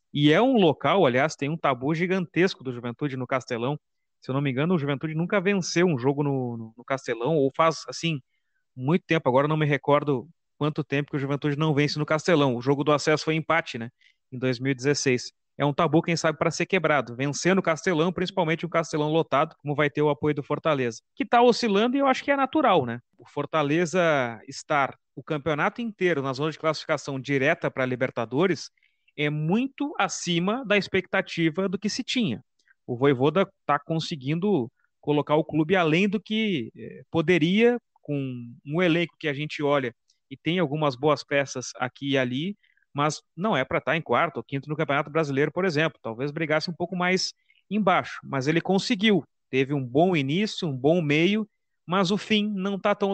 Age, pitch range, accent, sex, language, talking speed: 30-49, 140-185 Hz, Brazilian, male, Portuguese, 195 wpm